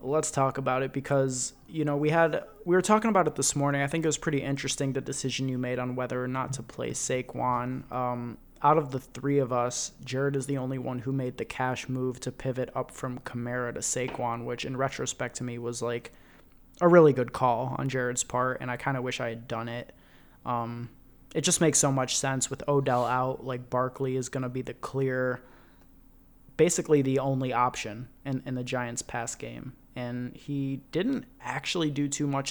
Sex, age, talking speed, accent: male, 20-39, 210 wpm, American